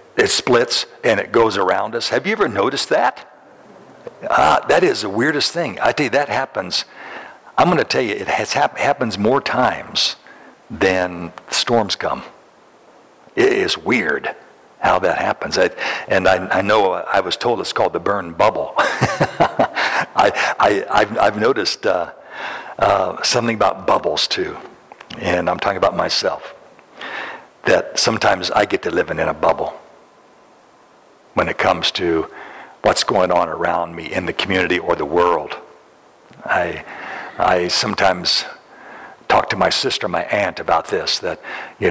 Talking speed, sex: 150 wpm, male